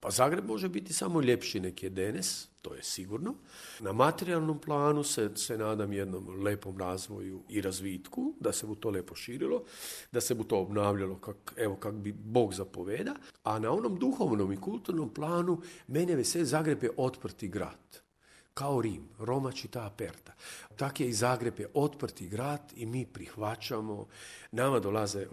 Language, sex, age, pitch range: Croatian, male, 50-69, 105-130 Hz